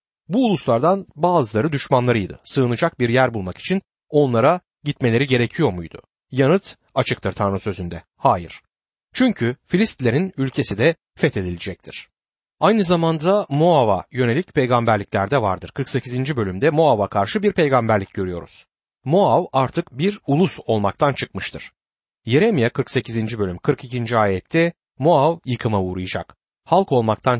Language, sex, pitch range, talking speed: Turkish, male, 110-165 Hz, 115 wpm